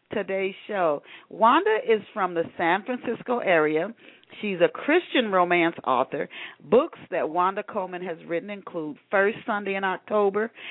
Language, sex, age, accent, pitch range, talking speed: English, female, 40-59, American, 180-230 Hz, 140 wpm